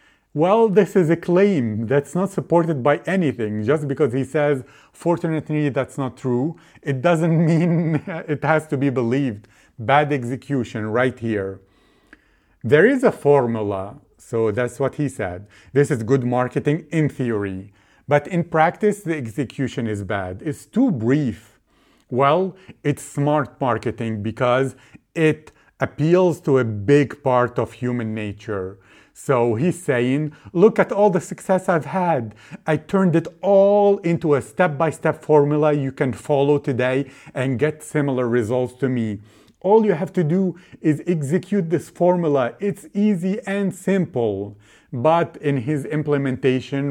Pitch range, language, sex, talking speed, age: 125-170 Hz, English, male, 145 wpm, 40-59